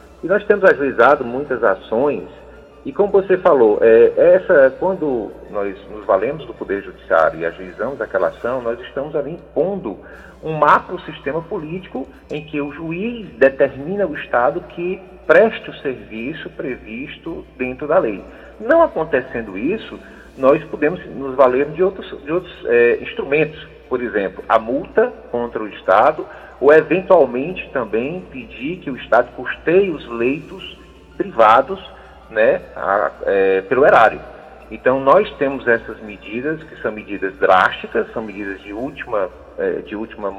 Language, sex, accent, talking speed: English, male, Brazilian, 140 wpm